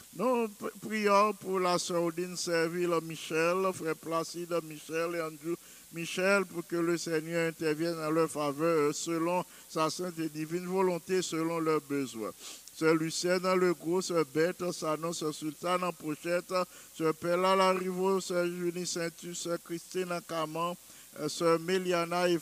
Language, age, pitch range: English, 50-69, 160-185 Hz